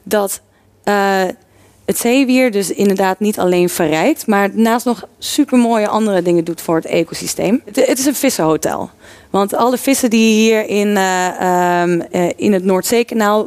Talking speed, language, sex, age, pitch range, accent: 160 wpm, Dutch, female, 20-39, 185-235 Hz, Dutch